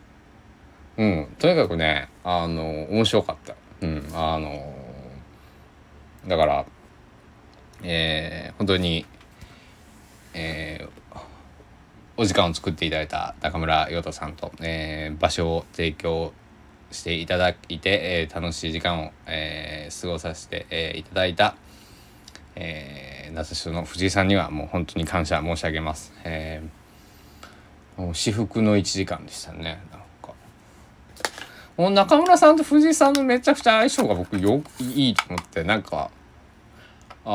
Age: 20-39